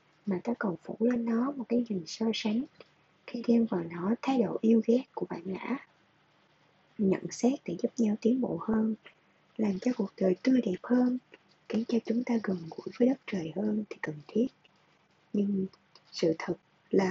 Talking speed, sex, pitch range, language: 190 wpm, female, 185-240 Hz, Vietnamese